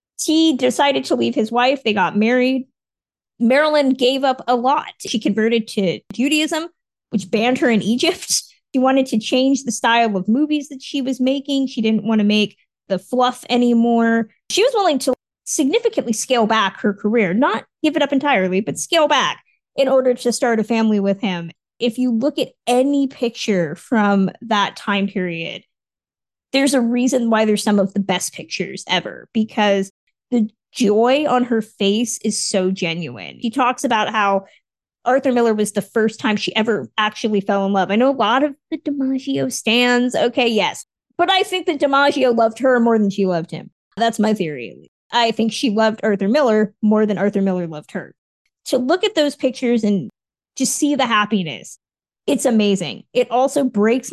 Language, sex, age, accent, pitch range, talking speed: English, female, 20-39, American, 210-265 Hz, 185 wpm